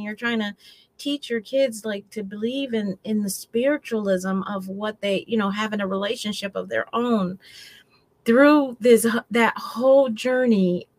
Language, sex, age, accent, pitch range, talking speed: English, female, 30-49, American, 185-225 Hz, 160 wpm